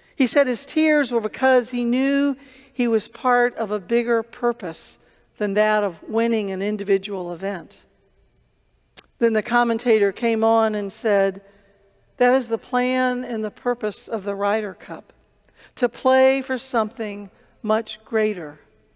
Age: 50-69